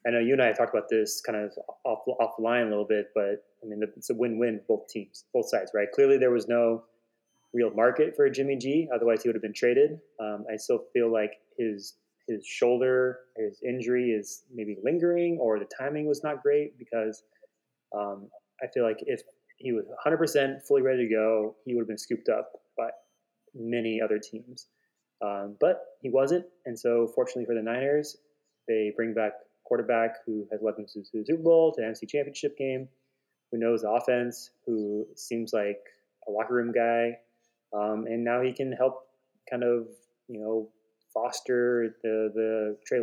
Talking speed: 190 wpm